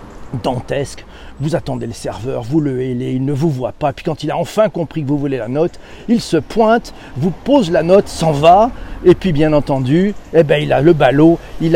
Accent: French